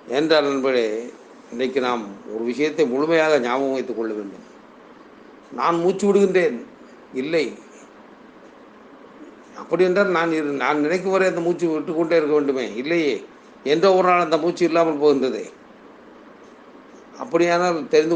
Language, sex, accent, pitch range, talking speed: Tamil, male, native, 135-180 Hz, 120 wpm